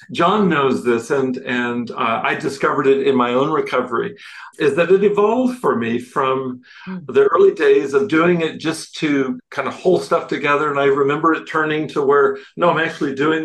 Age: 50-69